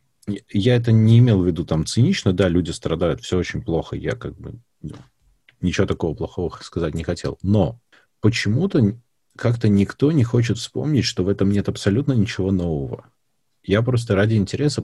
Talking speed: 165 wpm